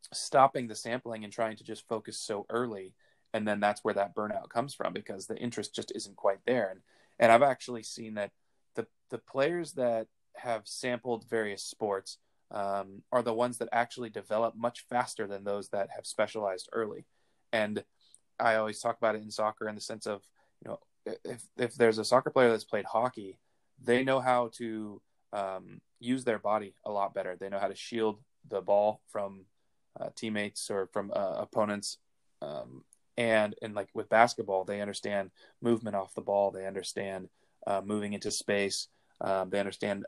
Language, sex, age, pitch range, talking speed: English, male, 20-39, 100-120 Hz, 185 wpm